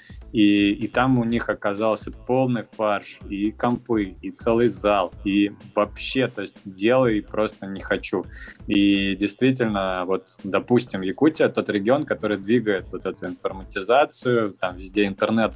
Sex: male